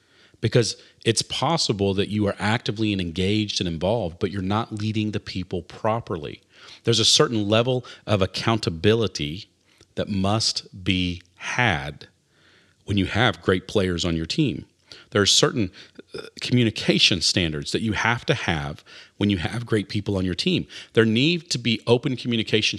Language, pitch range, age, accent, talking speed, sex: English, 95-115 Hz, 40-59, American, 155 wpm, male